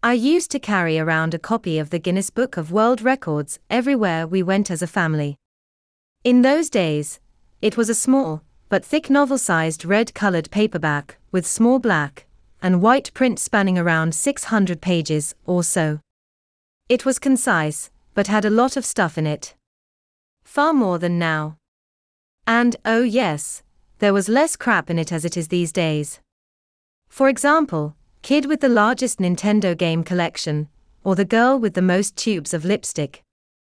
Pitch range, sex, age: 160-230 Hz, female, 30-49